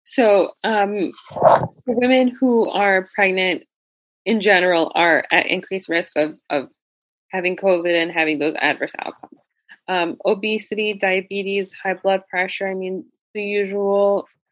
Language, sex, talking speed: English, female, 130 wpm